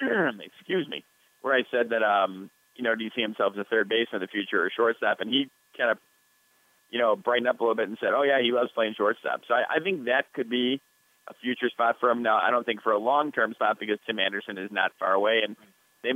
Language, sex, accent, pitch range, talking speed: English, male, American, 110-125 Hz, 260 wpm